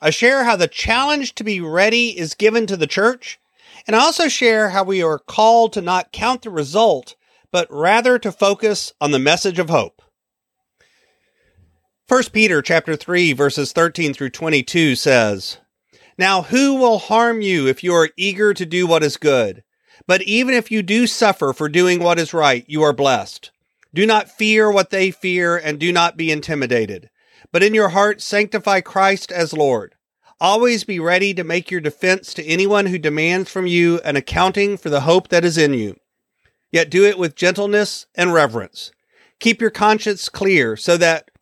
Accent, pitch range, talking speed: American, 150-205 Hz, 185 wpm